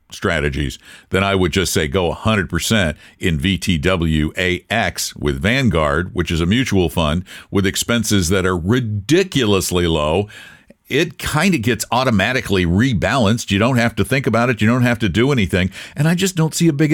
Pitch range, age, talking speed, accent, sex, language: 95-155 Hz, 60-79, 175 wpm, American, male, English